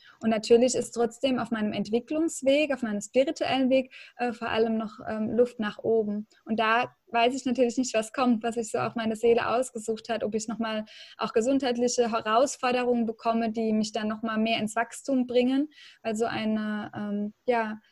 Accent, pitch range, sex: German, 220-250 Hz, female